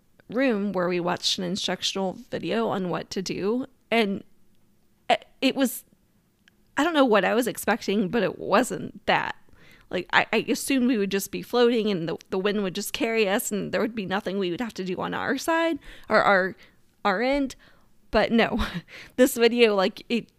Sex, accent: female, American